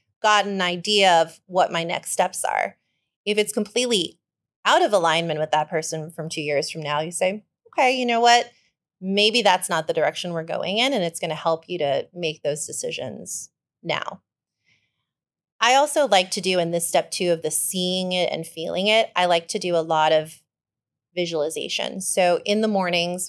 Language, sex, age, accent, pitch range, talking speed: English, female, 30-49, American, 165-205 Hz, 195 wpm